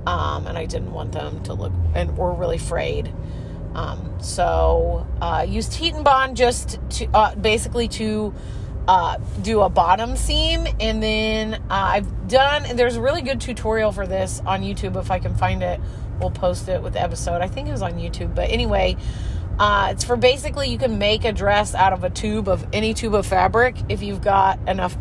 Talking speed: 205 wpm